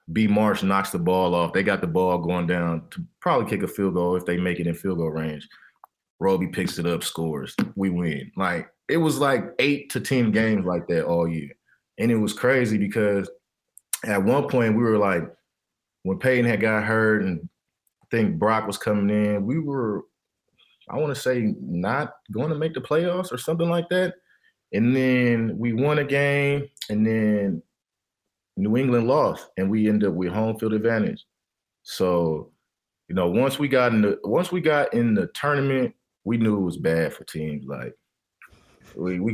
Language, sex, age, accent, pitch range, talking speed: English, male, 20-39, American, 90-125 Hz, 195 wpm